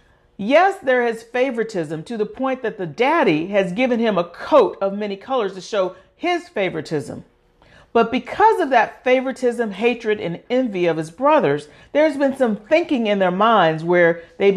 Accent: American